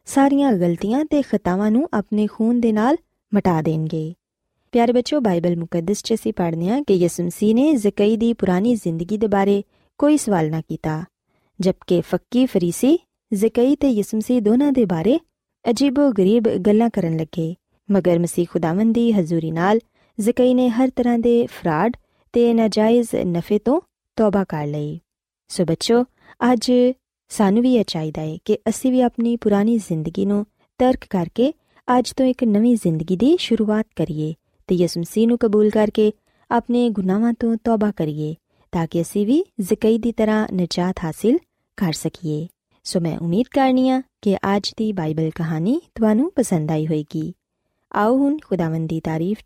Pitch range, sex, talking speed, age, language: 175-235 Hz, female, 150 wpm, 20-39, Punjabi